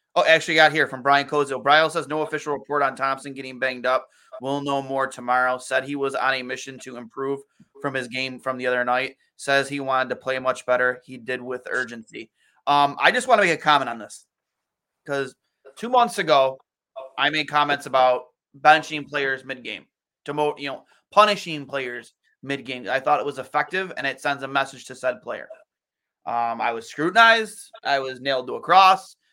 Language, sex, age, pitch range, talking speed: English, male, 20-39, 130-170 Hz, 195 wpm